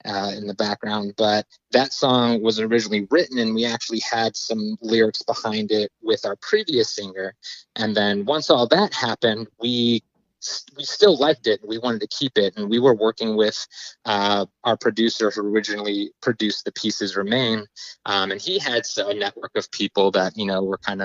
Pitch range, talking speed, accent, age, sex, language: 105-125 Hz, 185 wpm, American, 20-39, male, English